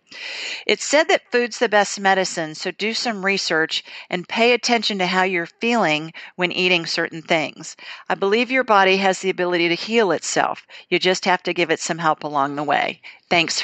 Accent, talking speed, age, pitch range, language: American, 195 wpm, 50-69, 170-215 Hz, English